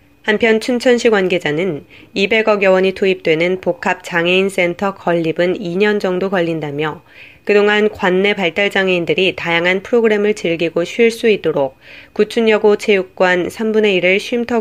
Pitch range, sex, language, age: 170-210 Hz, female, Korean, 20-39